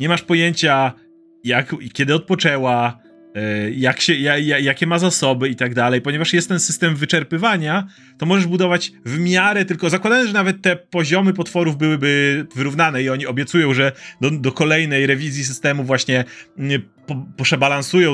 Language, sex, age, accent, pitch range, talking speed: Polish, male, 30-49, native, 140-175 Hz, 135 wpm